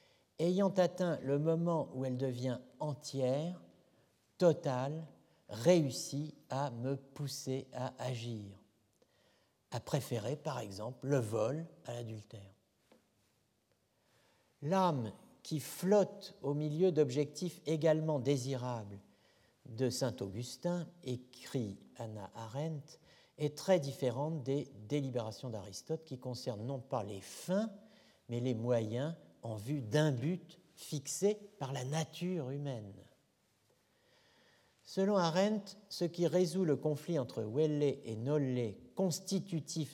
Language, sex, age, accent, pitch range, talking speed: French, male, 60-79, French, 115-155 Hz, 110 wpm